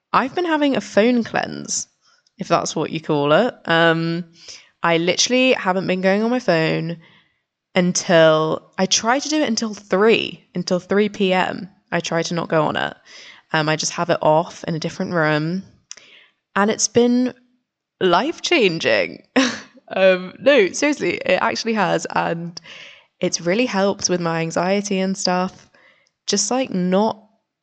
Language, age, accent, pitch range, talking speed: English, 10-29, British, 175-225 Hz, 155 wpm